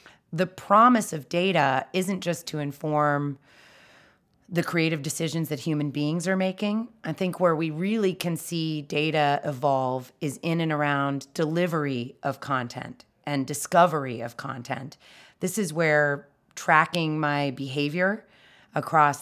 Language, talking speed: English, 135 wpm